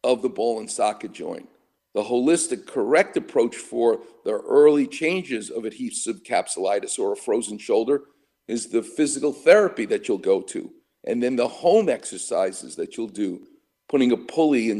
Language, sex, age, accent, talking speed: English, male, 50-69, American, 165 wpm